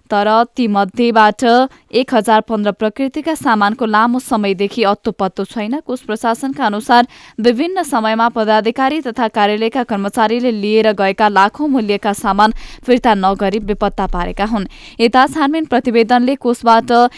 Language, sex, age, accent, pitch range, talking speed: English, female, 10-29, Indian, 205-245 Hz, 130 wpm